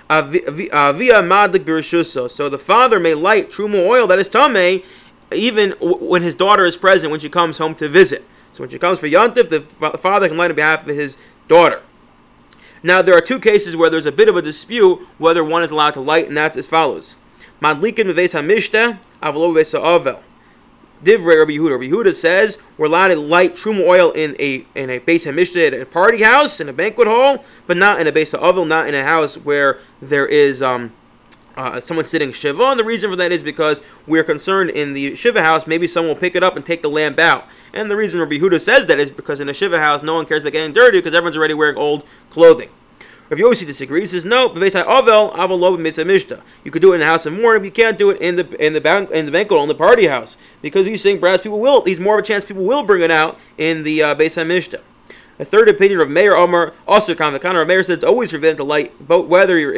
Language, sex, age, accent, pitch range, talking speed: English, male, 30-49, American, 155-205 Hz, 245 wpm